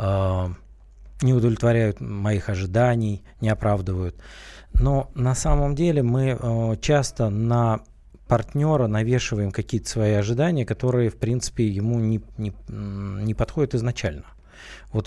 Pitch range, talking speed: 105-130 Hz, 110 wpm